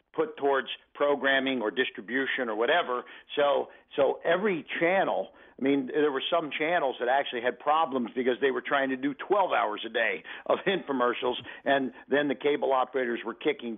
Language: English